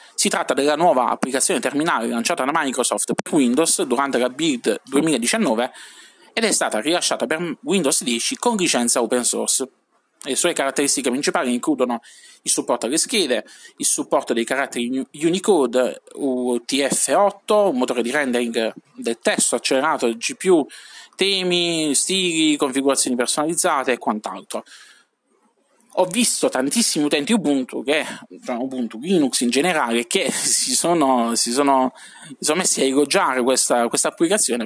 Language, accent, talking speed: Italian, native, 135 wpm